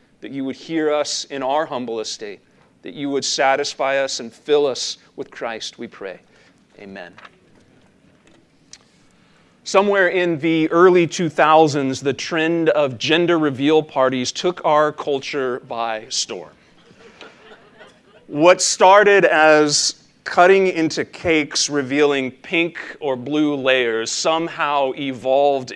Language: English